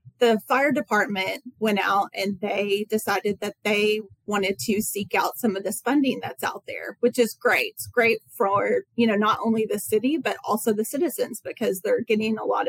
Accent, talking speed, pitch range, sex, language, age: American, 200 wpm, 205-240 Hz, female, English, 30-49